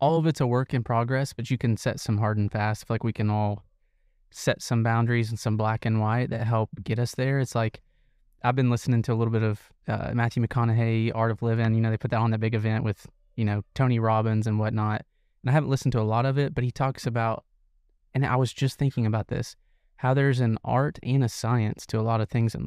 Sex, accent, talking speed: male, American, 255 wpm